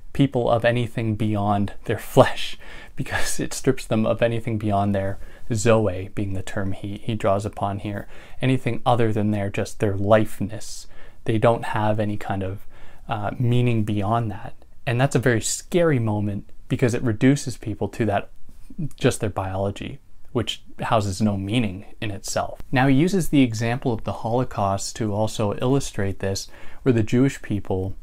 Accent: American